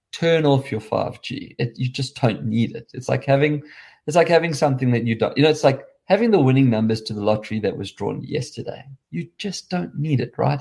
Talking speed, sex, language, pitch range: 215 wpm, male, English, 115-145 Hz